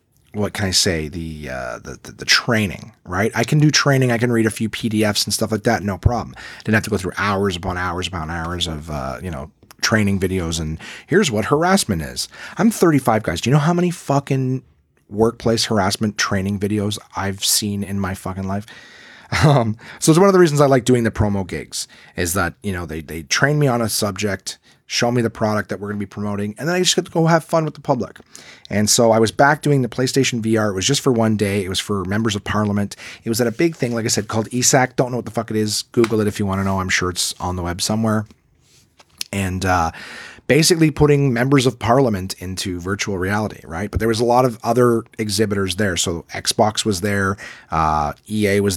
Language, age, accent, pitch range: English, 30-49, American, 95-125 Hz